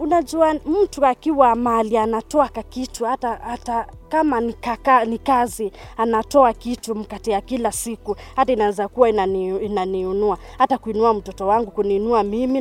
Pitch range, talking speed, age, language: 205-260 Hz, 130 wpm, 20-39, Swahili